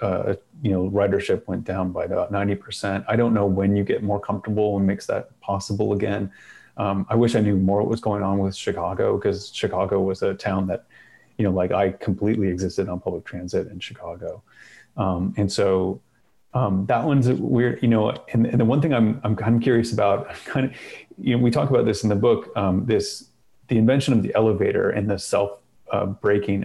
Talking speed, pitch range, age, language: 215 wpm, 100-115 Hz, 30-49, English